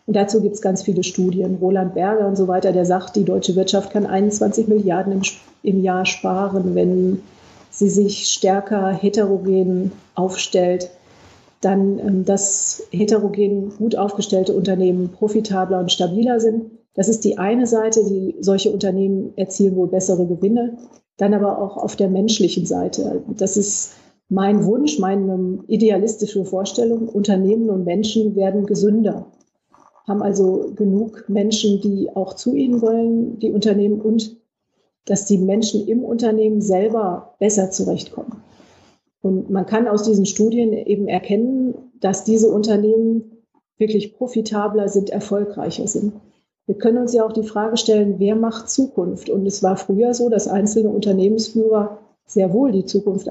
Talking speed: 145 wpm